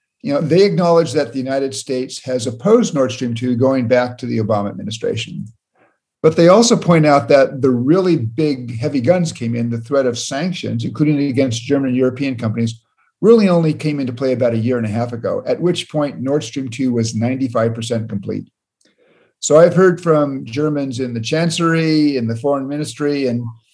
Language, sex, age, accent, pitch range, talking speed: English, male, 50-69, American, 125-160 Hz, 190 wpm